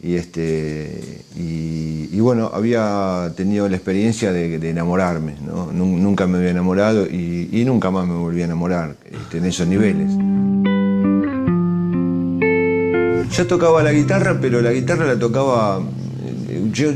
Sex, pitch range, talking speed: male, 85-115 Hz, 140 wpm